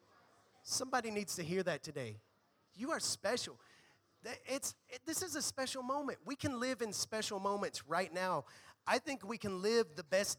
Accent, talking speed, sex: American, 170 wpm, male